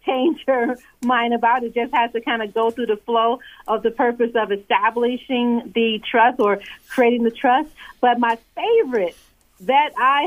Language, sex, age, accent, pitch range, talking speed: English, female, 40-59, American, 230-275 Hz, 180 wpm